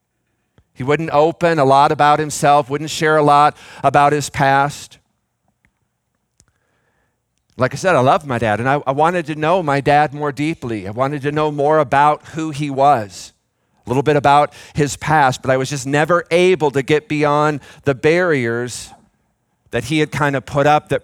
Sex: male